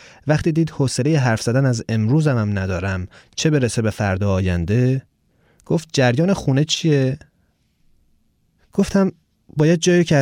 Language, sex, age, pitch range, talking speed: Persian, male, 30-49, 110-145 Hz, 130 wpm